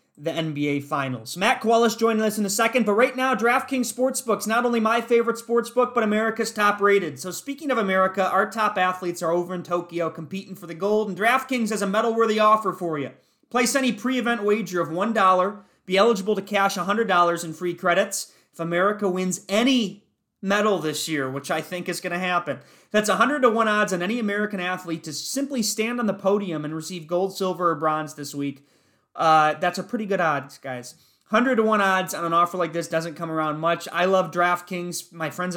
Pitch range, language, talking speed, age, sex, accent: 170-220 Hz, English, 210 wpm, 30-49, male, American